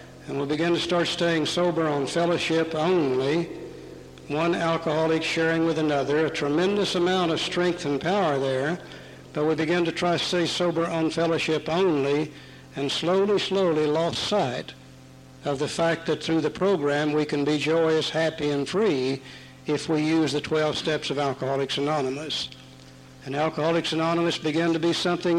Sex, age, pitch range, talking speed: male, 60-79, 140-165 Hz, 165 wpm